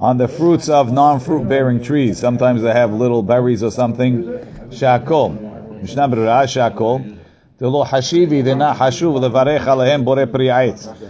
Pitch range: 115-140 Hz